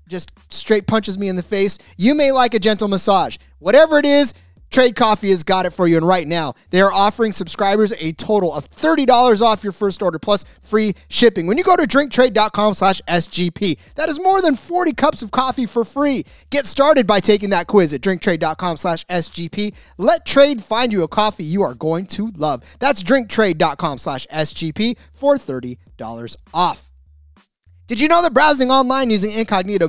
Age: 30-49